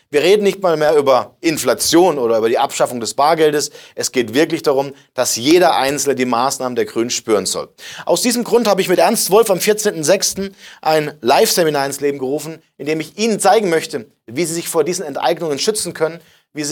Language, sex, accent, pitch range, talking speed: German, male, German, 135-170 Hz, 205 wpm